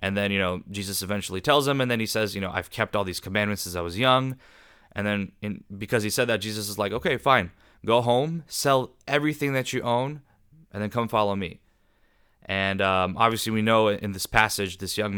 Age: 20-39